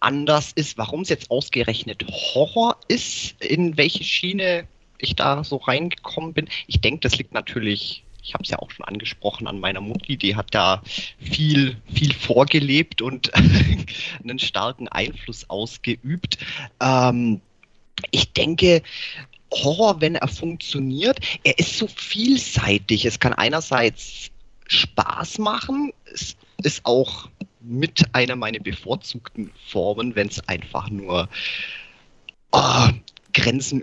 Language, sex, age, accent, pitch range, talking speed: German, male, 30-49, German, 105-145 Hz, 125 wpm